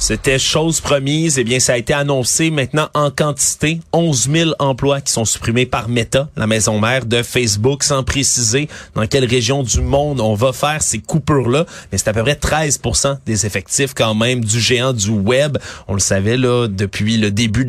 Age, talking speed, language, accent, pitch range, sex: 30-49, 195 wpm, French, Canadian, 110-145 Hz, male